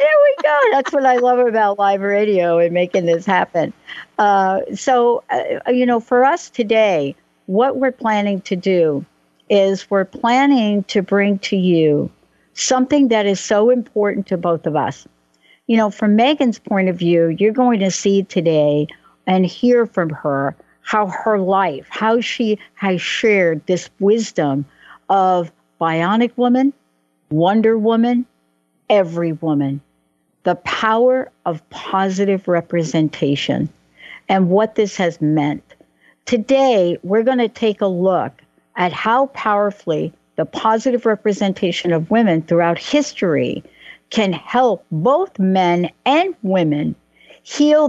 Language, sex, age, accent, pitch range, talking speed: English, female, 60-79, American, 170-230 Hz, 135 wpm